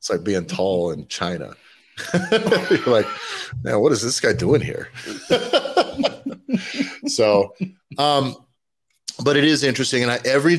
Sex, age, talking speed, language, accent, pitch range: male, 30-49, 135 wpm, English, American, 95-130 Hz